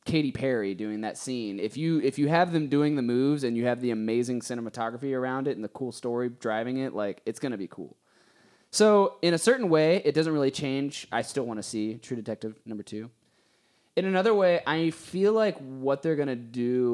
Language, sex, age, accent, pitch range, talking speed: English, male, 20-39, American, 110-150 Hz, 225 wpm